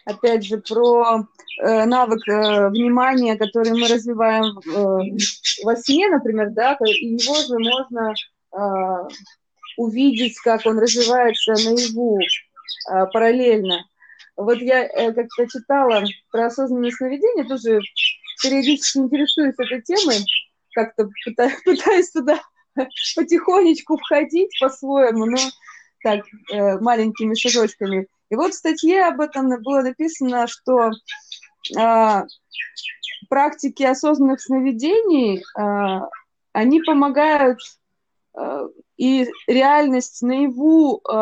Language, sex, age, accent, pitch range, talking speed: Russian, female, 20-39, native, 220-275 Hz, 100 wpm